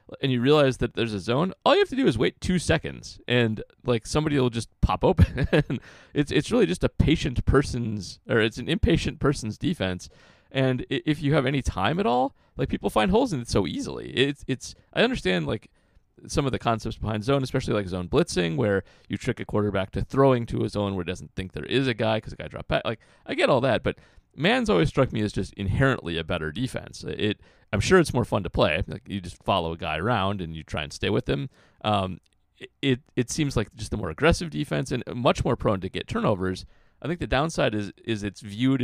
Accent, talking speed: American, 235 wpm